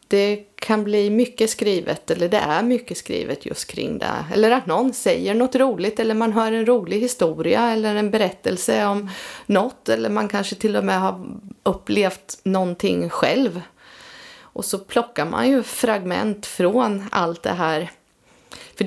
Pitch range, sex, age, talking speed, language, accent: 175-225 Hz, female, 30-49, 160 wpm, Swedish, native